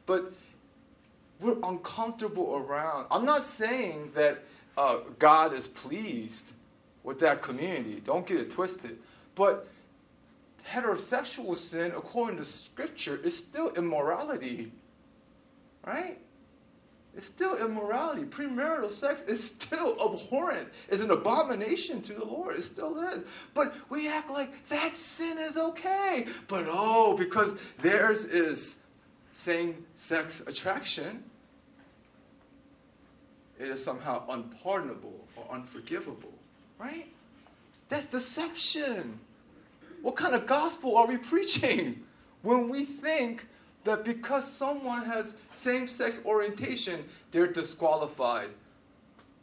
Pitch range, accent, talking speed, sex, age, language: 185-290 Hz, American, 110 wpm, male, 30-49, English